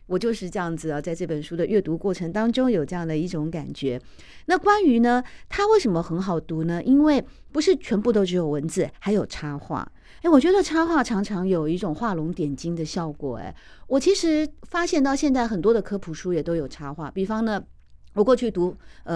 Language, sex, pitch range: Chinese, female, 165-240 Hz